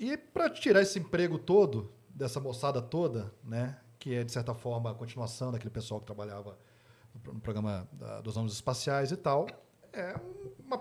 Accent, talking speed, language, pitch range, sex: Brazilian, 170 wpm, Portuguese, 125-175 Hz, male